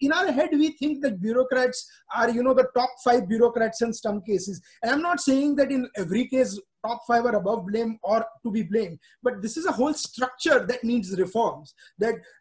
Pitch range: 205-255 Hz